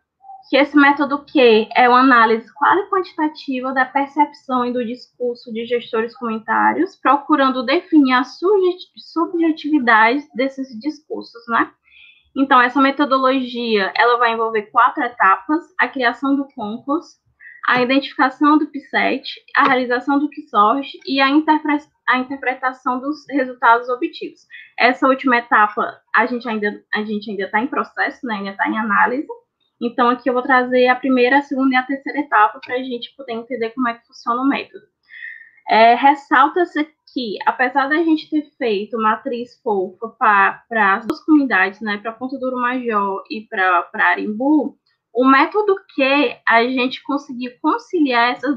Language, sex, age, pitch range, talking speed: Portuguese, female, 10-29, 235-295 Hz, 145 wpm